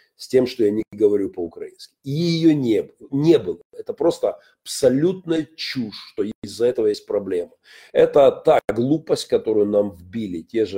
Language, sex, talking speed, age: Russian, male, 160 wpm, 40-59